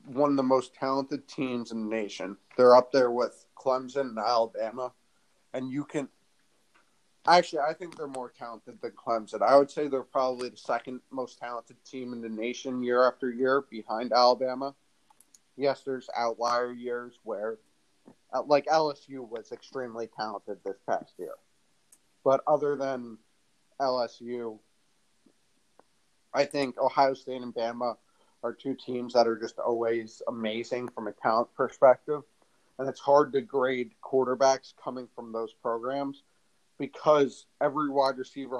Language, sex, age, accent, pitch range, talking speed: English, male, 30-49, American, 120-135 Hz, 145 wpm